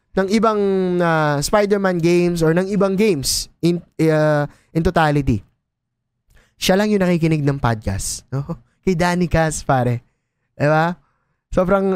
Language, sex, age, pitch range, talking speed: Filipino, male, 20-39, 130-185 Hz, 125 wpm